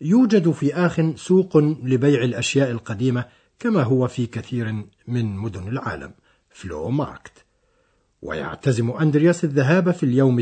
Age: 60-79